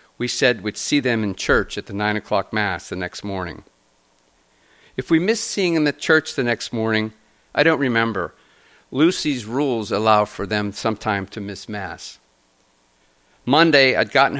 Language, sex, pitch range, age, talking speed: English, male, 100-135 Hz, 50-69, 165 wpm